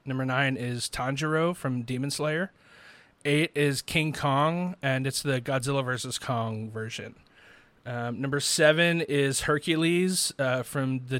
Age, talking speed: 30-49, 140 wpm